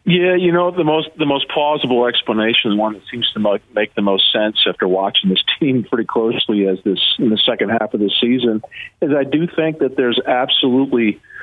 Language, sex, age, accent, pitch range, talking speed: English, male, 50-69, American, 120-155 Hz, 205 wpm